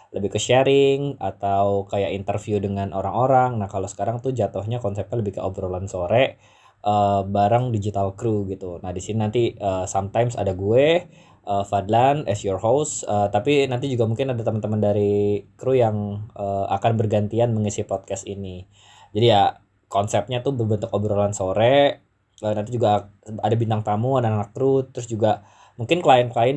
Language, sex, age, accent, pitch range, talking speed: Indonesian, male, 20-39, native, 100-120 Hz, 165 wpm